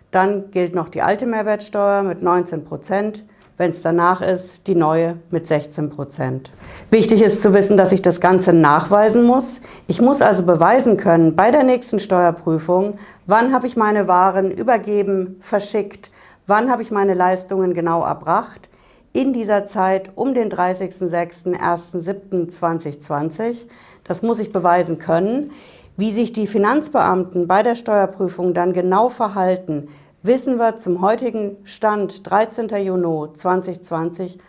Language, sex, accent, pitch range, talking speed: German, female, German, 175-215 Hz, 135 wpm